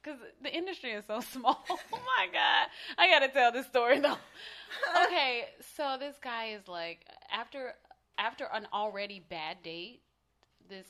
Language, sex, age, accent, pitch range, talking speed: English, female, 20-39, American, 170-225 Hz, 160 wpm